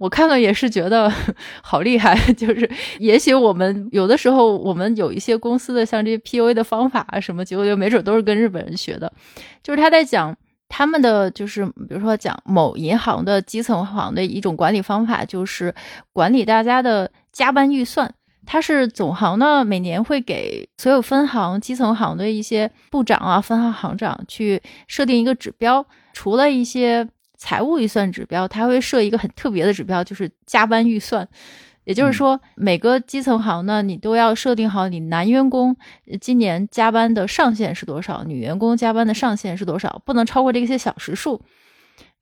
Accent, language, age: native, Chinese, 20-39